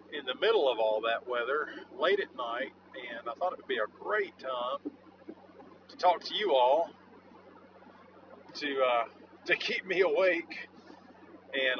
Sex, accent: male, American